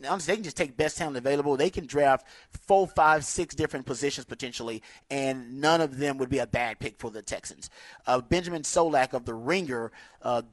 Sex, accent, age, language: male, American, 30-49, English